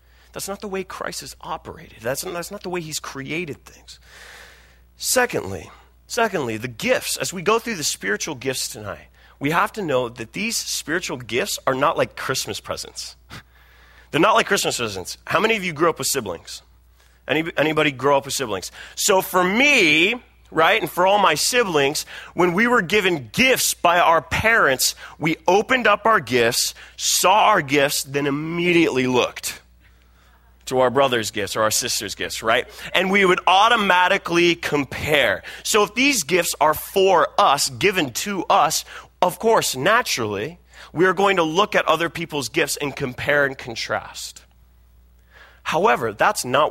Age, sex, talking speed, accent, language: 30-49, male, 165 wpm, American, English